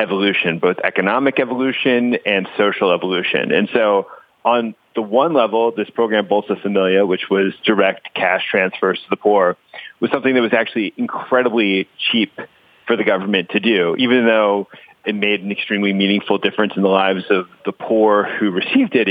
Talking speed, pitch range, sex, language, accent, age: 170 wpm, 100-120 Hz, male, English, American, 30-49